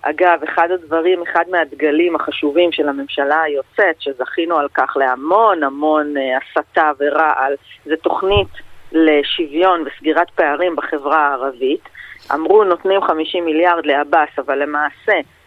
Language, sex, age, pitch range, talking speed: Hebrew, female, 30-49, 150-200 Hz, 125 wpm